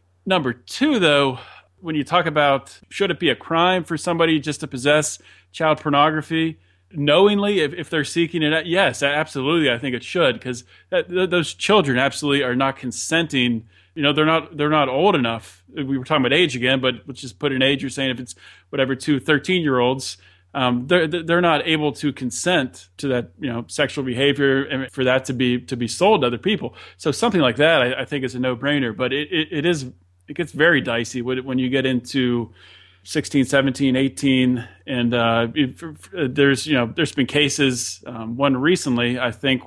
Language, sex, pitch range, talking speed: English, male, 125-150 Hz, 205 wpm